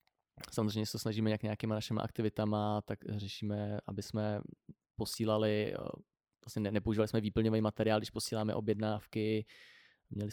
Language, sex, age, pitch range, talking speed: Czech, male, 20-39, 100-110 Hz, 130 wpm